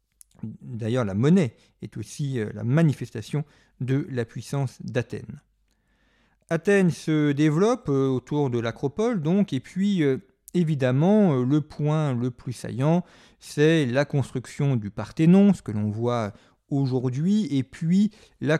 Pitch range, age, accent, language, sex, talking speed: 120-160 Hz, 40-59, French, French, male, 130 wpm